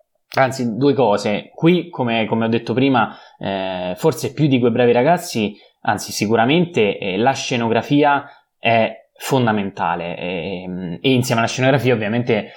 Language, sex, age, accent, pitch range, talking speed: Italian, male, 20-39, native, 100-125 Hz, 140 wpm